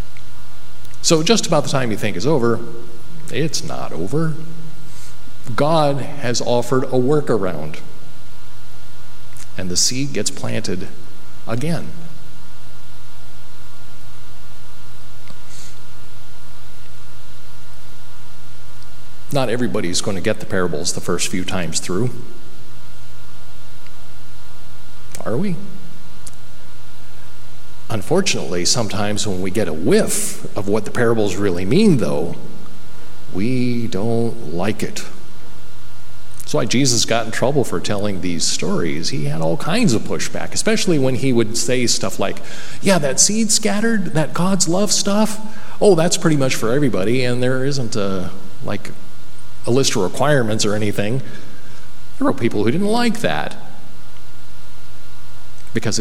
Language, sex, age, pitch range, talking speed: English, male, 50-69, 95-150 Hz, 120 wpm